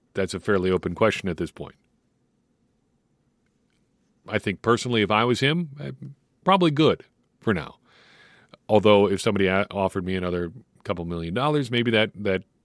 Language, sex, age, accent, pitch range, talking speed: English, male, 40-59, American, 90-115 Hz, 150 wpm